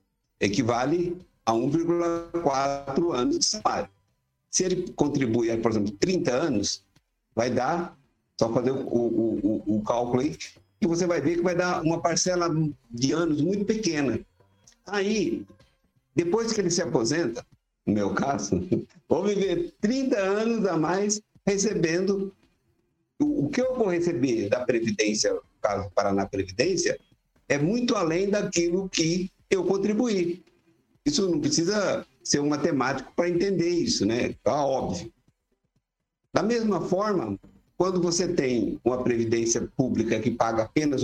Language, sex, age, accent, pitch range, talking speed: Portuguese, male, 60-79, Brazilian, 120-200 Hz, 140 wpm